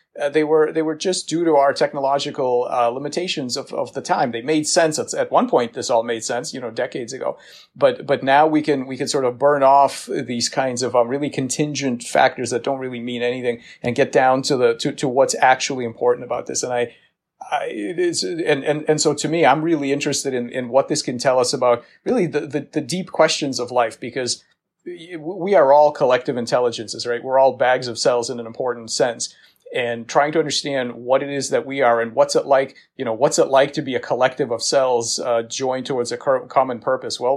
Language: English